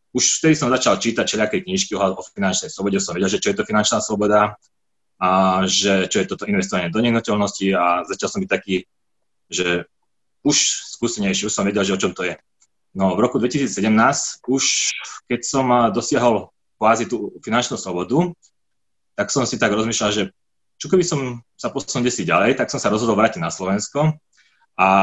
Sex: male